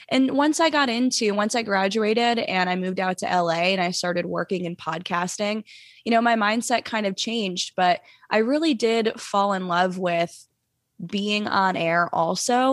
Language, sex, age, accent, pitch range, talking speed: English, female, 20-39, American, 180-230 Hz, 185 wpm